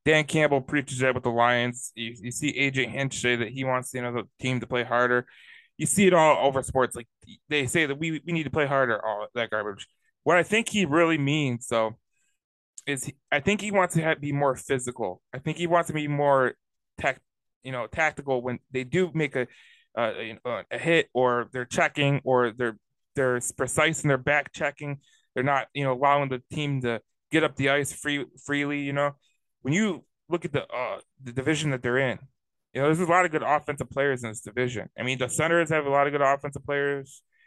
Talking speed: 230 wpm